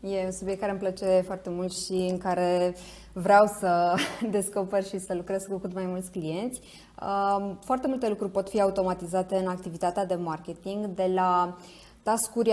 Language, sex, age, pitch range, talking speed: Romanian, female, 20-39, 185-225 Hz, 170 wpm